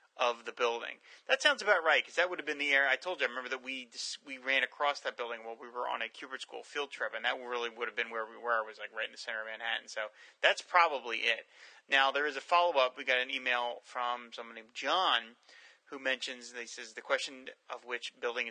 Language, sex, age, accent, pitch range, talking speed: English, male, 30-49, American, 120-155 Hz, 255 wpm